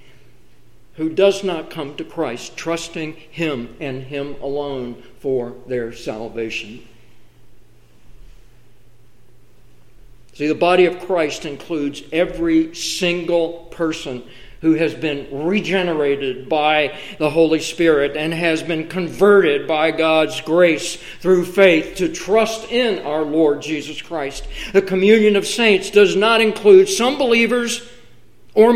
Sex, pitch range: male, 145-200 Hz